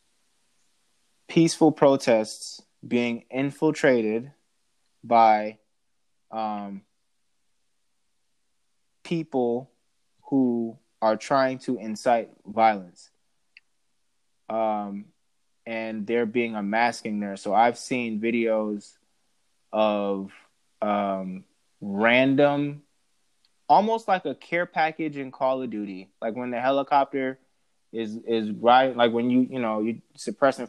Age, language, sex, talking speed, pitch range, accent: 20-39, English, male, 95 wpm, 110-140 Hz, American